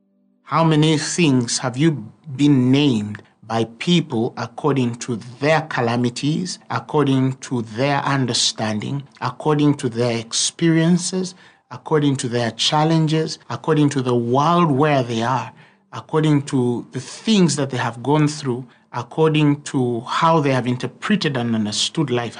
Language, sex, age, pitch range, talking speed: English, male, 60-79, 120-160 Hz, 135 wpm